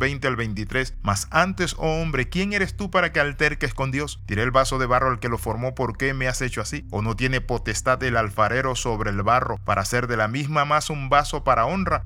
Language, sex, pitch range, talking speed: Spanish, male, 115-150 Hz, 245 wpm